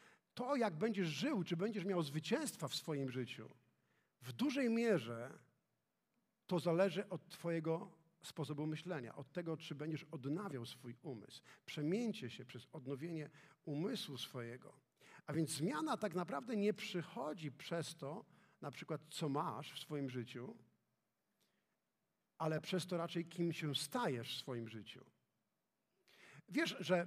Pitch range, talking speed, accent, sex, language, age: 155-220 Hz, 135 wpm, native, male, Polish, 50-69